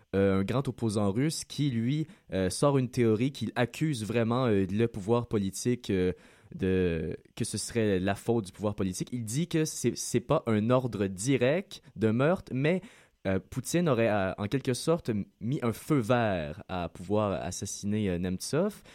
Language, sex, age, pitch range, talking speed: French, male, 20-39, 100-125 Hz, 175 wpm